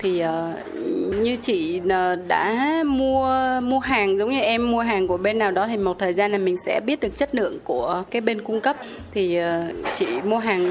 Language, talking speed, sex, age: Vietnamese, 195 wpm, female, 20-39